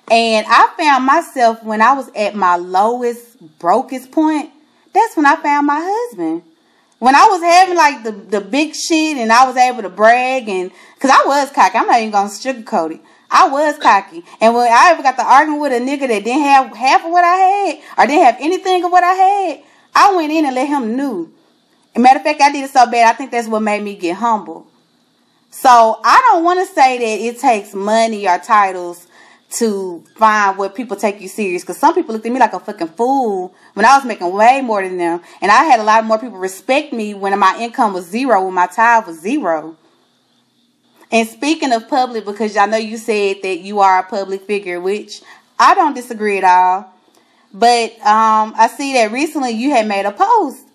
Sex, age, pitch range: female, 30-49, 200-280 Hz